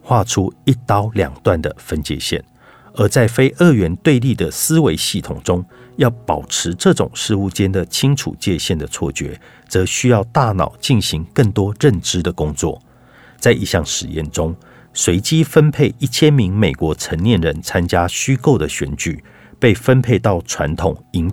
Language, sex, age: Chinese, male, 50-69